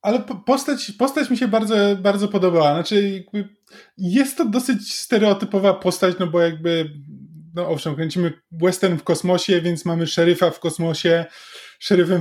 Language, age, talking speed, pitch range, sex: Polish, 20-39, 145 wpm, 165-190 Hz, male